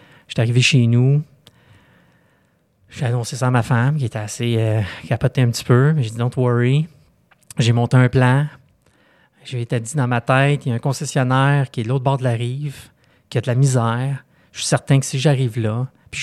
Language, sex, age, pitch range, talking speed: French, male, 30-49, 115-135 Hz, 225 wpm